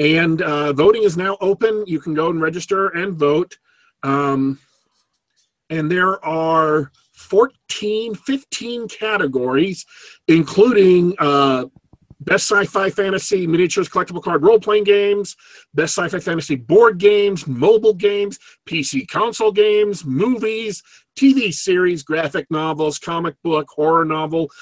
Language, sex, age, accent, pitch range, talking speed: English, male, 40-59, American, 155-205 Hz, 120 wpm